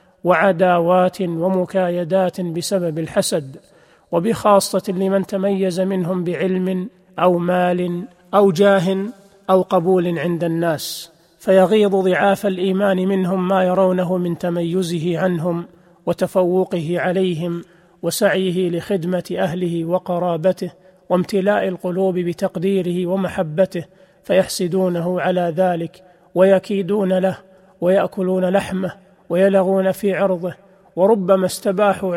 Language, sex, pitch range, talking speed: Arabic, male, 175-190 Hz, 90 wpm